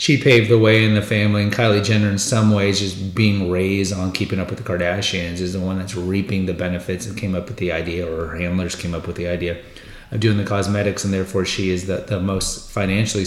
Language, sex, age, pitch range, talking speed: English, male, 30-49, 95-110 Hz, 250 wpm